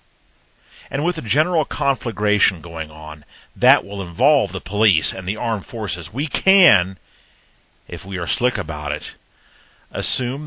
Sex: male